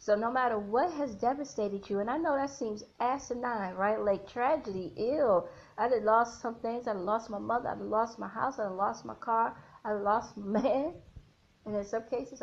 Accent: American